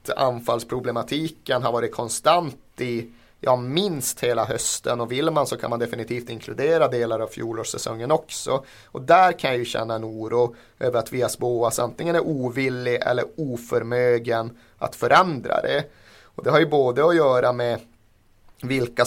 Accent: native